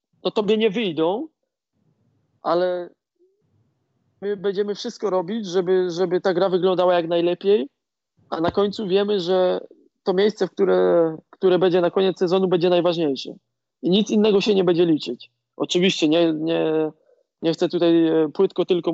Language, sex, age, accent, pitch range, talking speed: Polish, male, 20-39, native, 160-190 Hz, 145 wpm